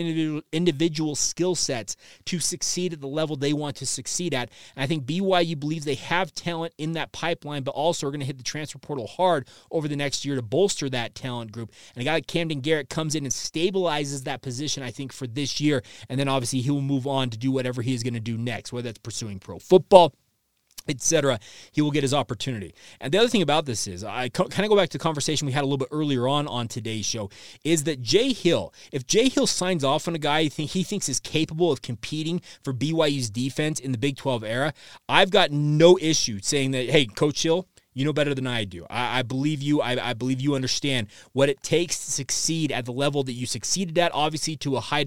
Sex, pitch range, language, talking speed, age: male, 130-165 Hz, English, 240 wpm, 30-49